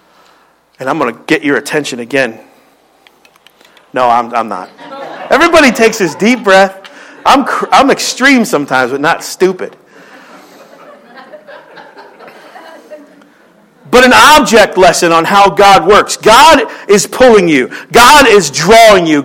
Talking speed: 125 wpm